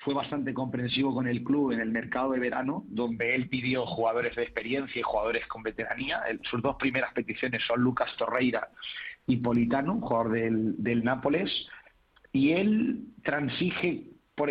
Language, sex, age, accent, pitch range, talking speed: Spanish, male, 40-59, Spanish, 120-145 Hz, 155 wpm